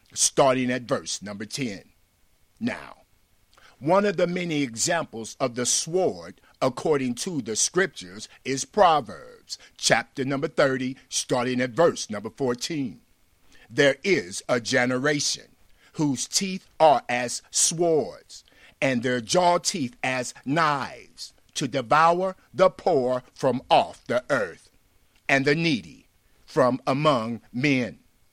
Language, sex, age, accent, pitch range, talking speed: English, male, 50-69, American, 125-175 Hz, 120 wpm